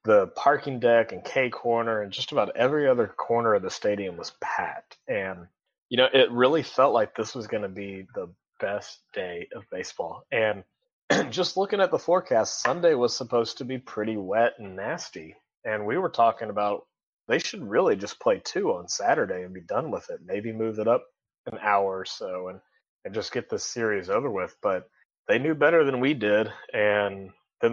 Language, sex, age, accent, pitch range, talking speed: English, male, 30-49, American, 105-130 Hz, 200 wpm